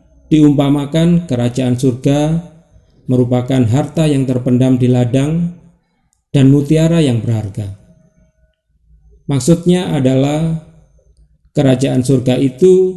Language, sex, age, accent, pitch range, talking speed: Indonesian, male, 50-69, native, 125-160 Hz, 85 wpm